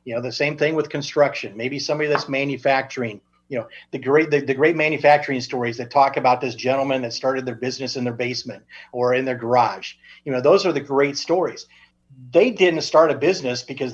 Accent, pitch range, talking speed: American, 125-150 Hz, 210 wpm